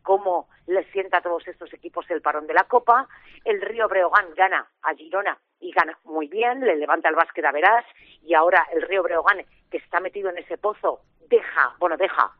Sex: female